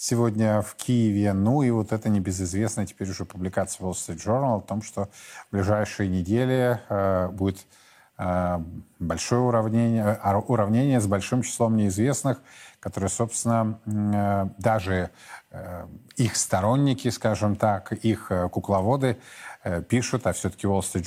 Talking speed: 135 wpm